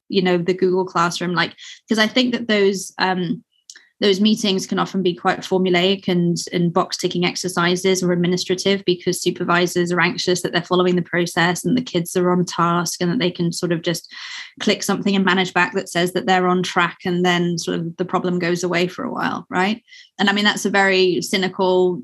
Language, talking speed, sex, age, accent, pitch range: English, 210 wpm, female, 20-39, British, 175-190 Hz